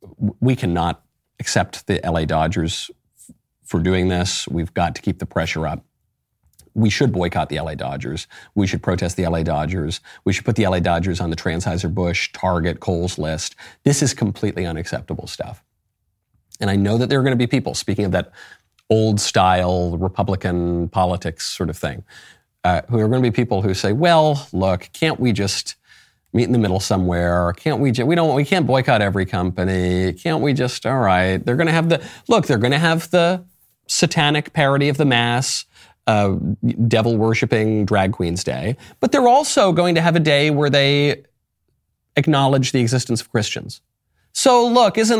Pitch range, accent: 90-140 Hz, American